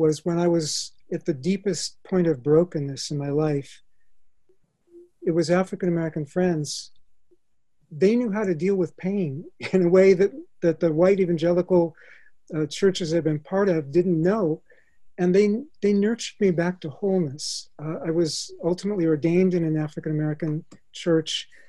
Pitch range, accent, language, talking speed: 160-190 Hz, American, English, 160 wpm